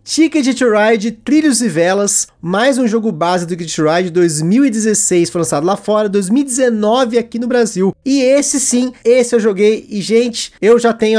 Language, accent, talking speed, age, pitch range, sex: Portuguese, Brazilian, 180 wpm, 20-39, 175-245 Hz, male